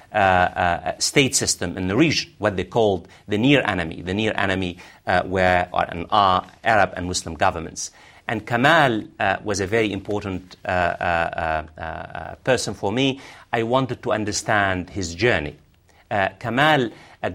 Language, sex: English, male